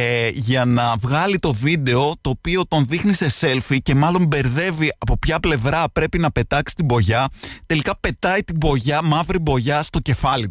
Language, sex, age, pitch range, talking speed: Greek, male, 20-39, 110-155 Hz, 170 wpm